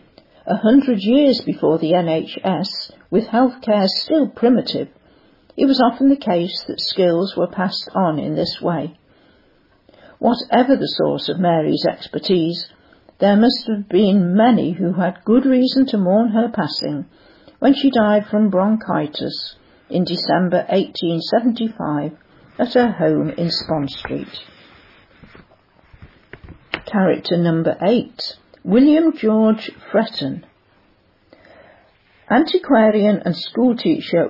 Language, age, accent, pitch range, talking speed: English, 50-69, British, 175-235 Hz, 115 wpm